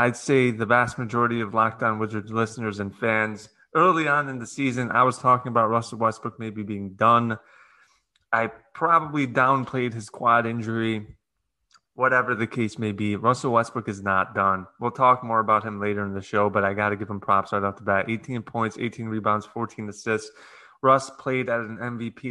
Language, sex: English, male